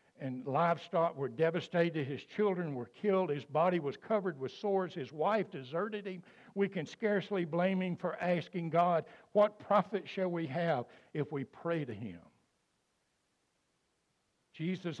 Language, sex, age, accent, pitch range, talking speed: English, male, 60-79, American, 140-175 Hz, 150 wpm